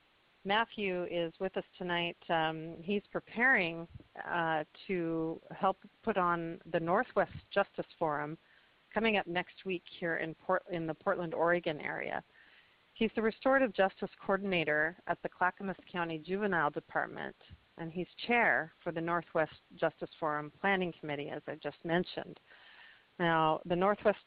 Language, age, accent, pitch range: English, 40-59, American, 155-190 Hz